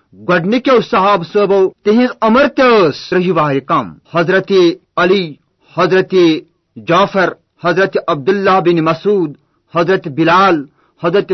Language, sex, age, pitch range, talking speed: Urdu, male, 40-59, 165-195 Hz, 105 wpm